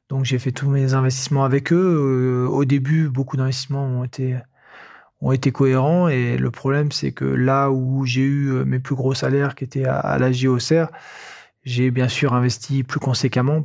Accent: French